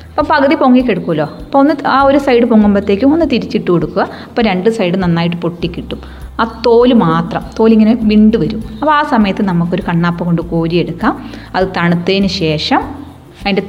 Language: Malayalam